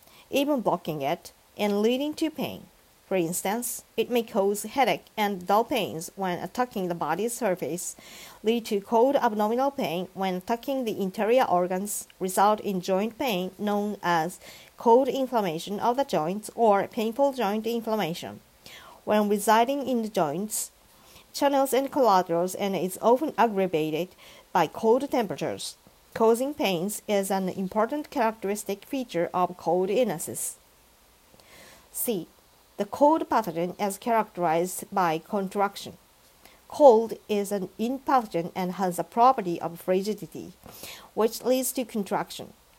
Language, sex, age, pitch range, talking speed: English, female, 50-69, 185-235 Hz, 130 wpm